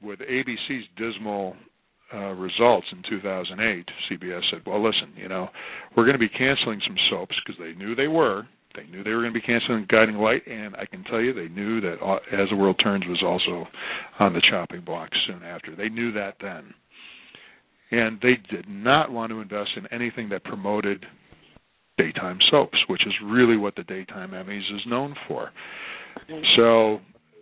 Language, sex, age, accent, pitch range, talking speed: English, male, 50-69, American, 100-115 Hz, 180 wpm